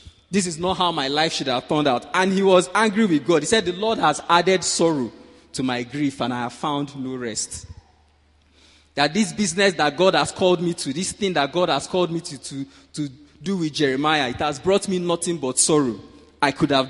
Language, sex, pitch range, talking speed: English, male, 120-175 Hz, 225 wpm